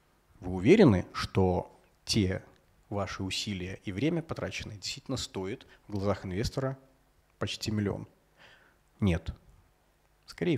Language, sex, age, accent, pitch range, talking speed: Russian, male, 30-49, native, 100-130 Hz, 100 wpm